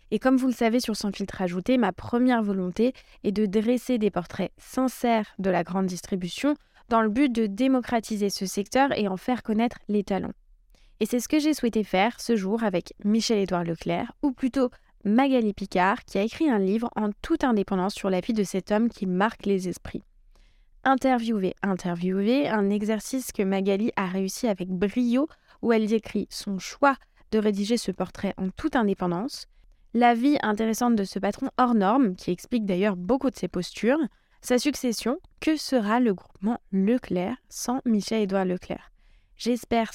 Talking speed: 180 wpm